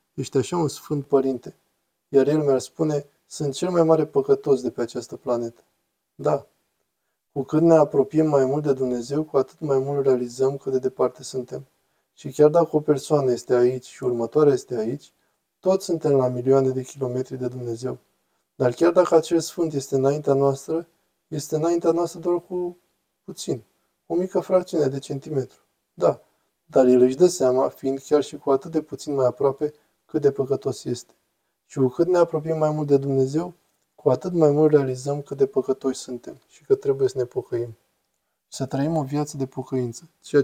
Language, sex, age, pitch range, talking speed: Romanian, male, 20-39, 130-165 Hz, 185 wpm